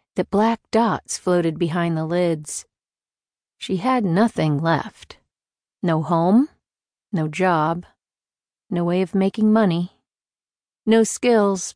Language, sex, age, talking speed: English, female, 50-69, 110 wpm